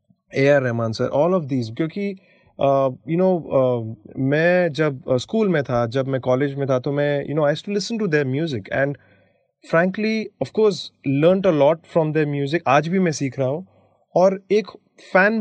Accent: native